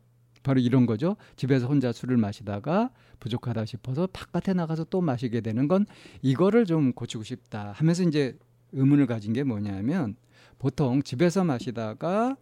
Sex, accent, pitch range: male, native, 120-155 Hz